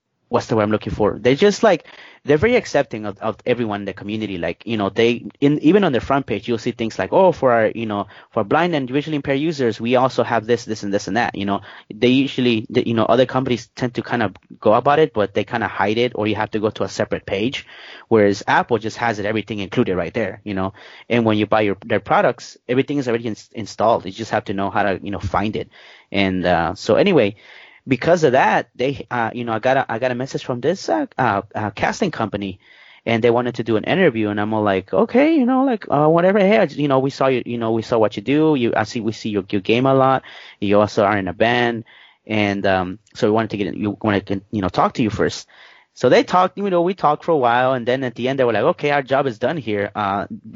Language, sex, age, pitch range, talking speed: English, male, 20-39, 105-130 Hz, 275 wpm